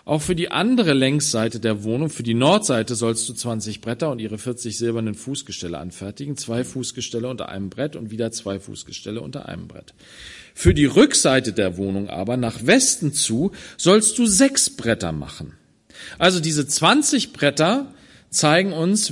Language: German